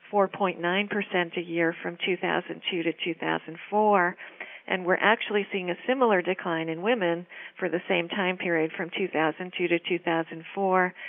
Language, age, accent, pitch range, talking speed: English, 50-69, American, 170-195 Hz, 130 wpm